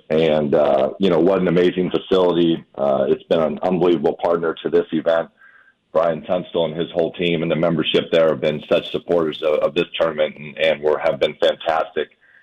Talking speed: 200 wpm